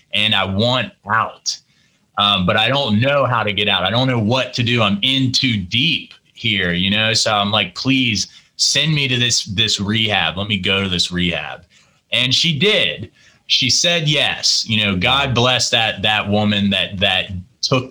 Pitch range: 100-135 Hz